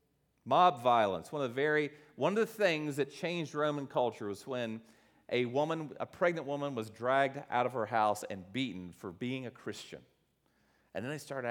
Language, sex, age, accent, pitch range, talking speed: English, male, 40-59, American, 120-165 Hz, 195 wpm